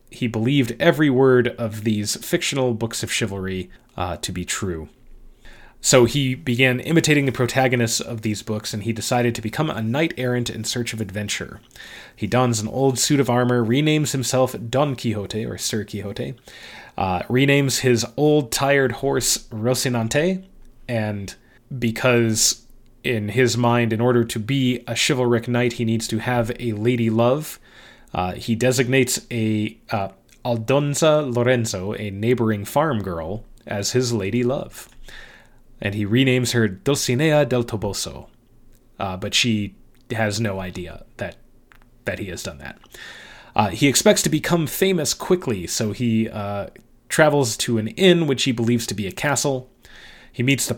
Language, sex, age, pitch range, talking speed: English, male, 20-39, 110-130 Hz, 155 wpm